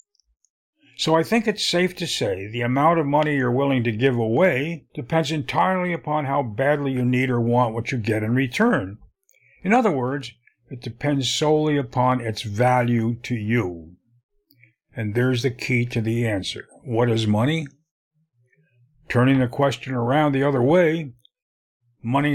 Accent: American